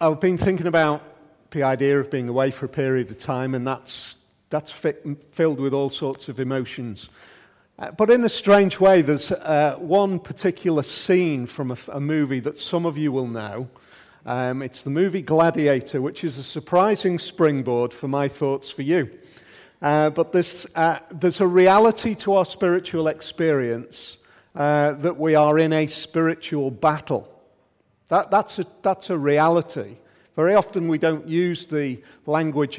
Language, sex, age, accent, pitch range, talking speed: English, male, 40-59, British, 130-165 Hz, 170 wpm